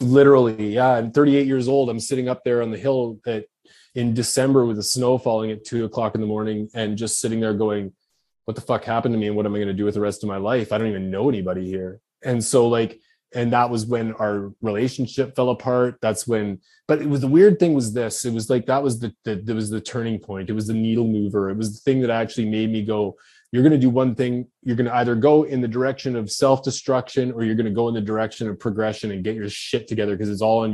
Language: English